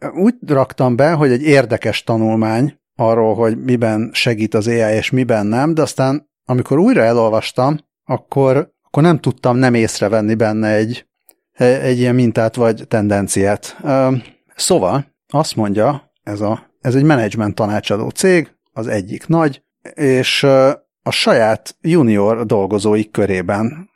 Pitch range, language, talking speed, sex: 105-135 Hz, Hungarian, 130 wpm, male